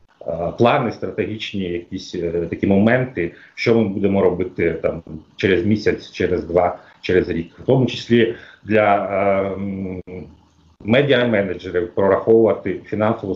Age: 40-59